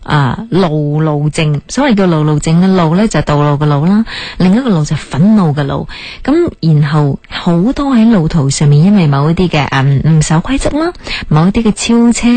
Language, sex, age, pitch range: Chinese, female, 20-39, 150-200 Hz